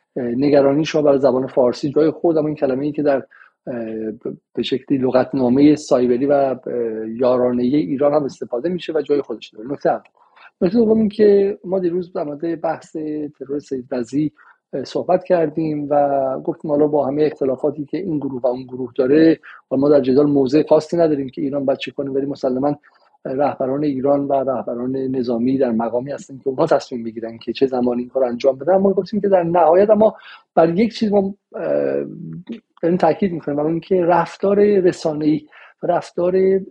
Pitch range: 130-160 Hz